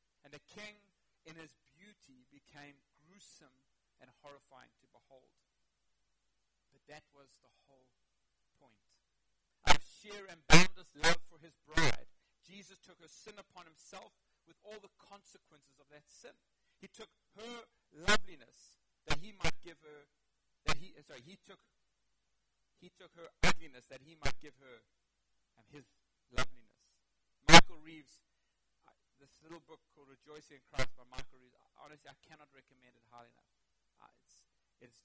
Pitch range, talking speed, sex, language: 135-185 Hz, 150 wpm, male, English